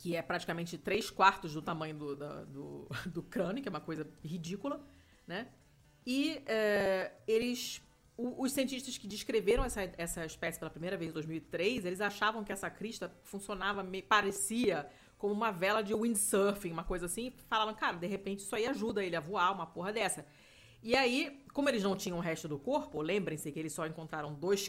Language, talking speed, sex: Portuguese, 190 wpm, female